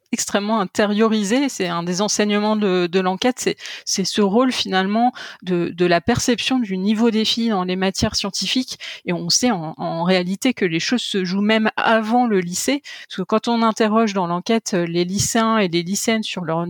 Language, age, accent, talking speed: French, 30-49, French, 200 wpm